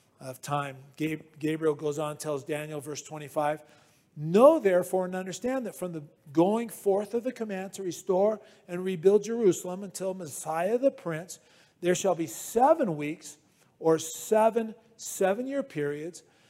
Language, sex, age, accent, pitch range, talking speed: English, male, 40-59, American, 155-205 Hz, 145 wpm